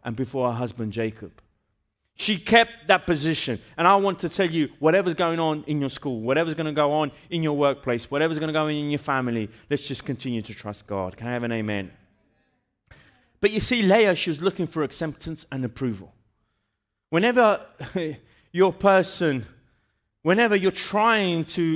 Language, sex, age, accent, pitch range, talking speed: Italian, male, 30-49, British, 130-190 Hz, 180 wpm